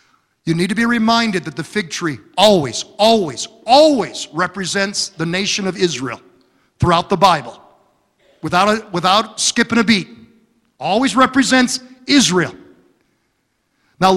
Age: 50-69